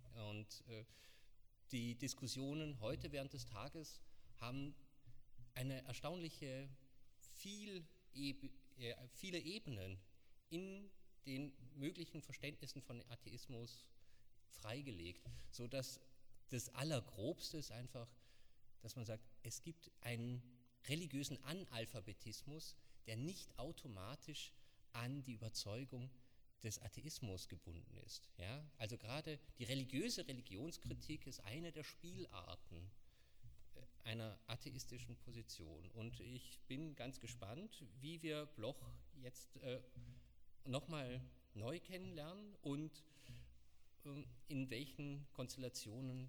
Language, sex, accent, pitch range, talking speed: German, male, German, 115-140 Hz, 95 wpm